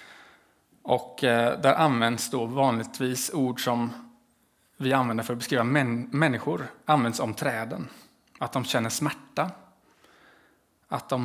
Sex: male